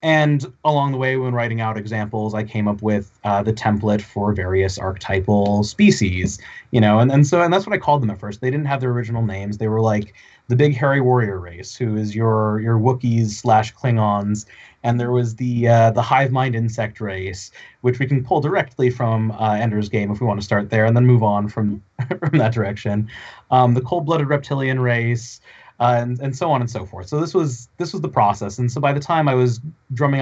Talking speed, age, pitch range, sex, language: 225 wpm, 30-49, 110-135 Hz, male, English